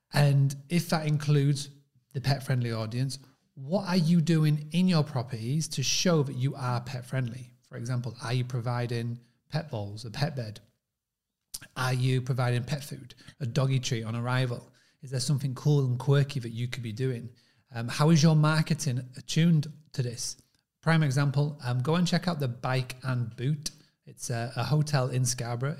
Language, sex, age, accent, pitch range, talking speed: English, male, 30-49, British, 125-150 Hz, 180 wpm